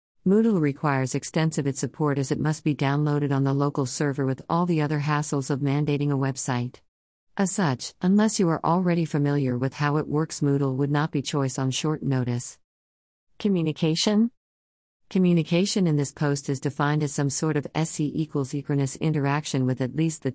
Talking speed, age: 180 wpm, 50-69